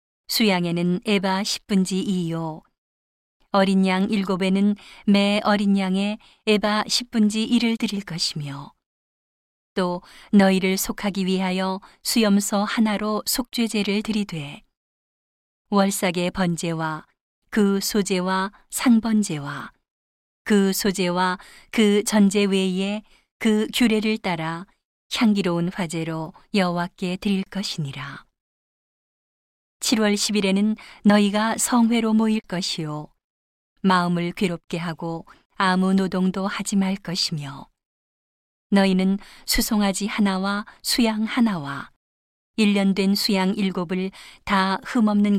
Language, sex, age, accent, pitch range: Korean, female, 40-59, native, 180-210 Hz